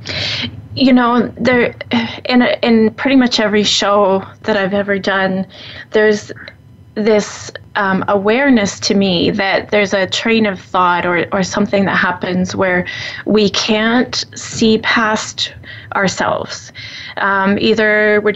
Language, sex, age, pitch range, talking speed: English, female, 20-39, 190-220 Hz, 125 wpm